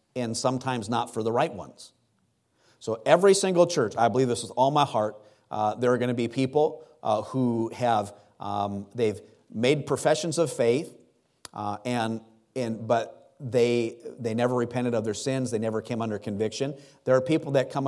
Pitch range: 110-130 Hz